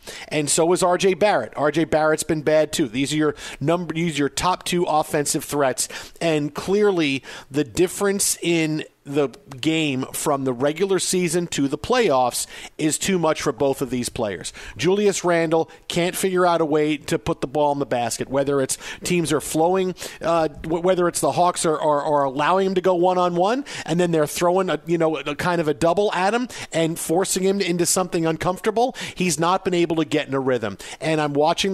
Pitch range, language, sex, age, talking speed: 145-185 Hz, English, male, 50-69, 210 wpm